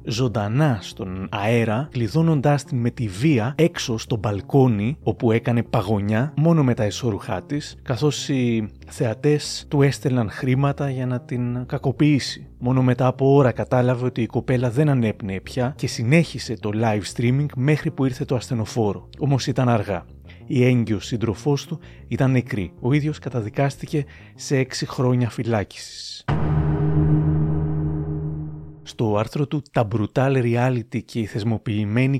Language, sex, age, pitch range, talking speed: Greek, male, 30-49, 110-135 Hz, 140 wpm